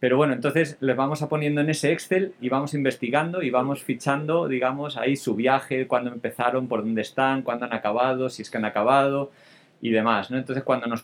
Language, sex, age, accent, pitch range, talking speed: Spanish, male, 20-39, Spanish, 120-145 Hz, 210 wpm